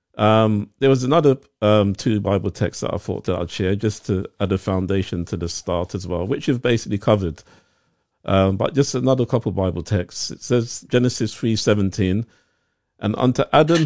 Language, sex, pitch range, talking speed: English, male, 100-125 Hz, 190 wpm